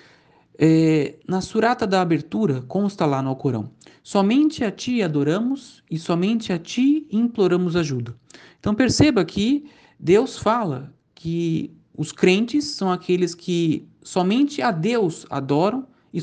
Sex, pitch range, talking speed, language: male, 155-250 Hz, 125 wpm, Portuguese